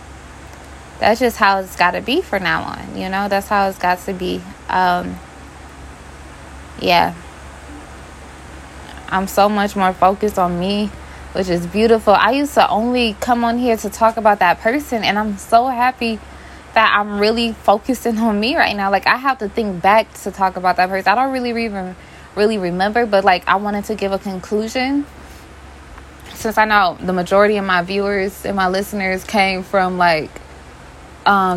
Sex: female